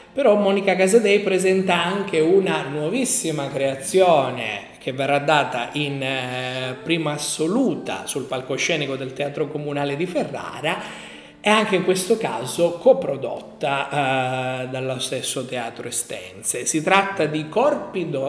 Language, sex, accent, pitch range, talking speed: Italian, male, native, 135-195 Hz, 120 wpm